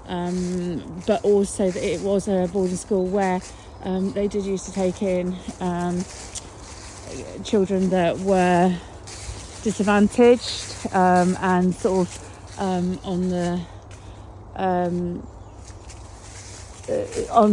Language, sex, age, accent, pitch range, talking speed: English, female, 30-49, British, 150-195 Hz, 105 wpm